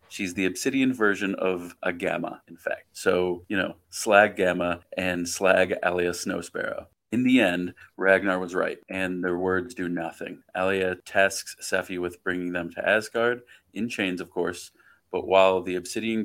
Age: 30-49